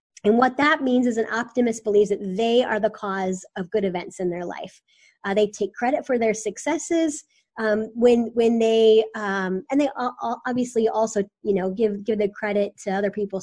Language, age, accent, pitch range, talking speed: English, 20-39, American, 205-240 Hz, 195 wpm